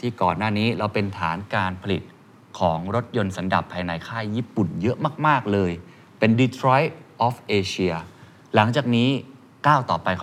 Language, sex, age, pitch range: Thai, male, 20-39, 100-130 Hz